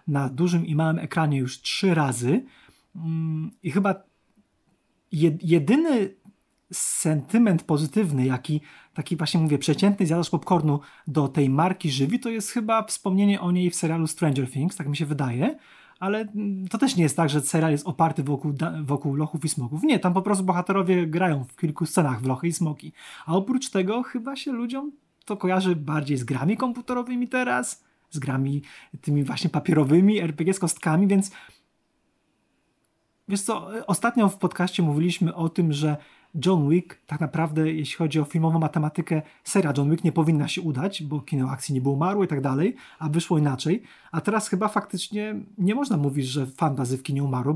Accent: native